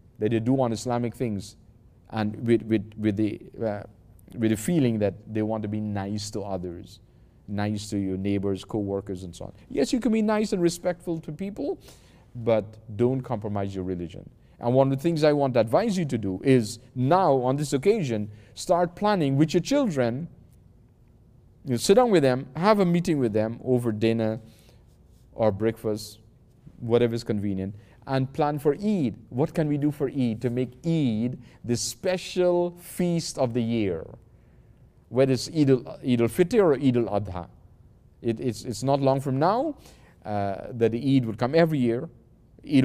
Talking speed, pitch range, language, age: 175 wpm, 110-140 Hz, English, 40-59